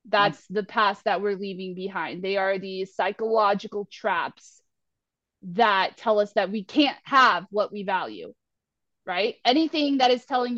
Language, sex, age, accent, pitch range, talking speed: English, female, 20-39, American, 220-290 Hz, 155 wpm